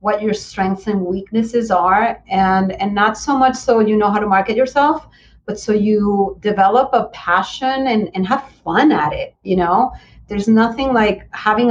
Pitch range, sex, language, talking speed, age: 185-235 Hz, female, English, 185 wpm, 30-49